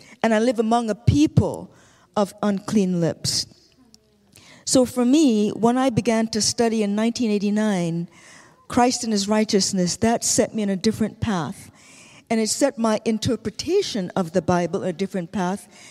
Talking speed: 155 wpm